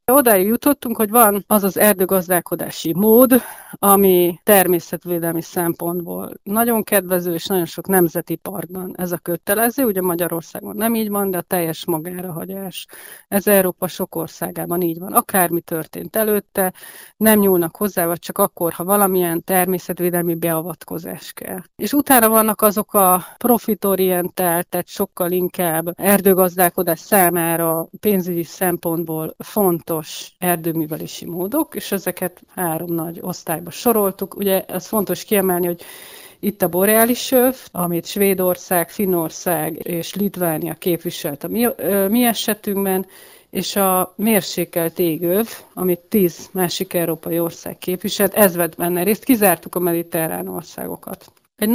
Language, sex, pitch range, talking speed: Hungarian, female, 175-205 Hz, 130 wpm